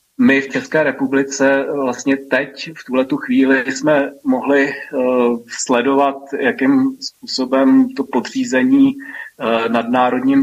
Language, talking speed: Slovak, 115 wpm